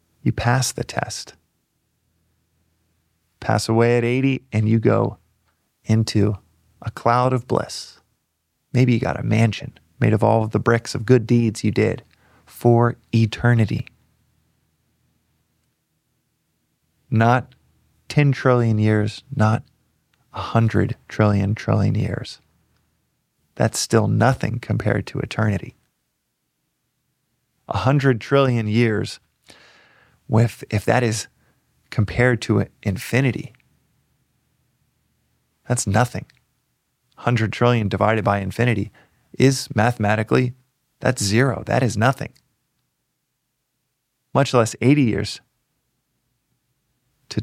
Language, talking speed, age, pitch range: English, 100 wpm, 30-49, 105-125 Hz